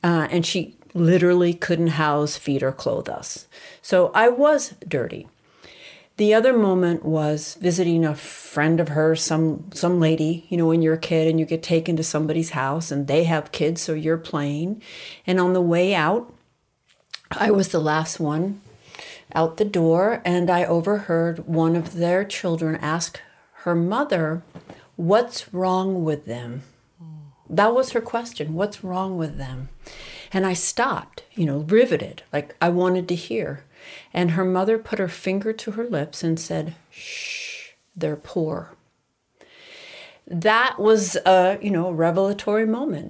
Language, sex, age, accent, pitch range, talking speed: English, female, 50-69, American, 160-200 Hz, 155 wpm